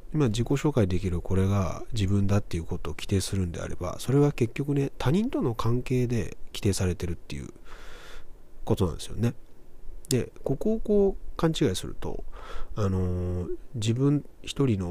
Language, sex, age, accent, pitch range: Japanese, male, 30-49, native, 90-125 Hz